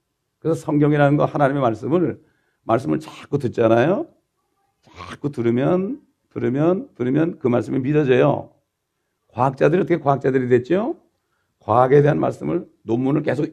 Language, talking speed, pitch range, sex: English, 105 wpm, 115-155 Hz, male